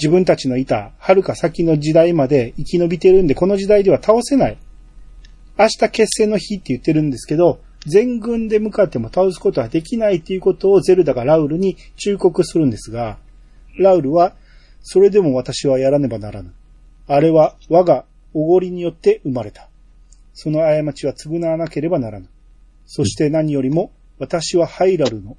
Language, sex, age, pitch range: Japanese, male, 40-59, 135-180 Hz